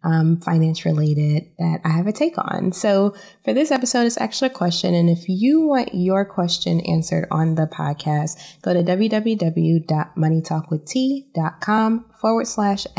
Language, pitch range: English, 165-200 Hz